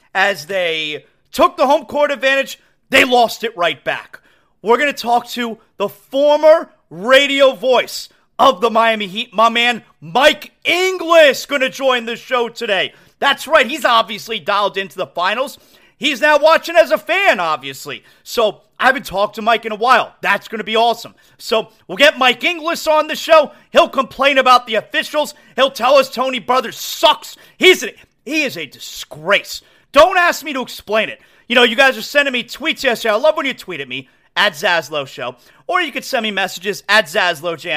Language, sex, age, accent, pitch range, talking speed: English, male, 40-59, American, 215-300 Hz, 190 wpm